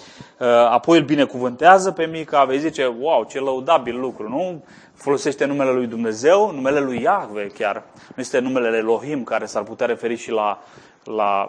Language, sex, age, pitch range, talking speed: Romanian, male, 20-39, 115-155 Hz, 160 wpm